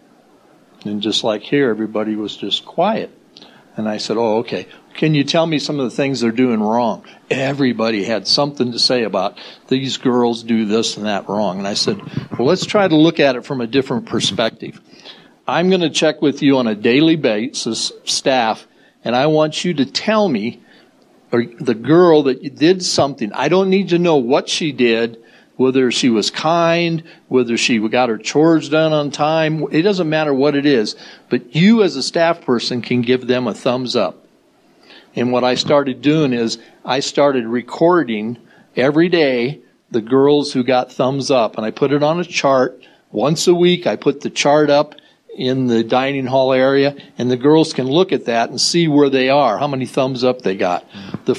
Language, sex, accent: English, male, American